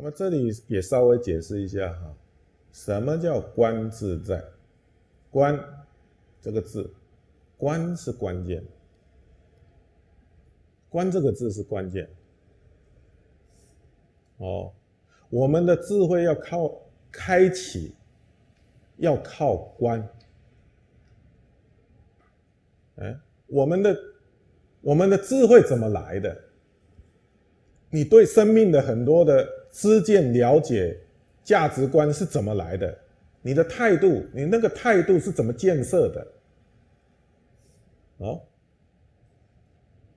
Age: 50-69